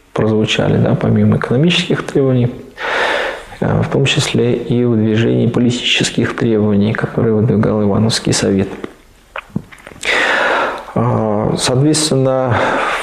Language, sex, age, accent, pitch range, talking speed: Russian, male, 20-39, native, 115-160 Hz, 80 wpm